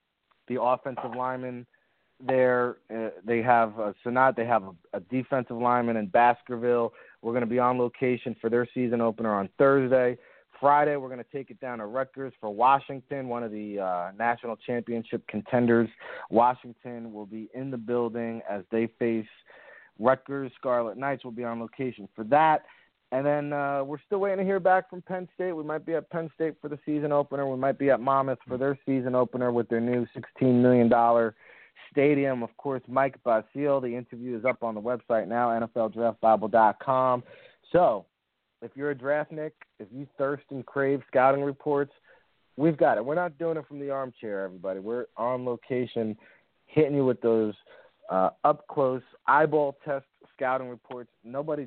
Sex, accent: male, American